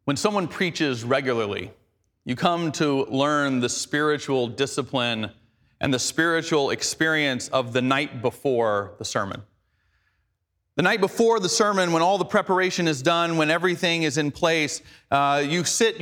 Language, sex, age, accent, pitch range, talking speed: English, male, 30-49, American, 135-195 Hz, 150 wpm